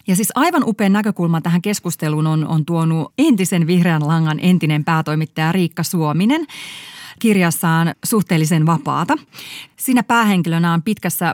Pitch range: 160-210 Hz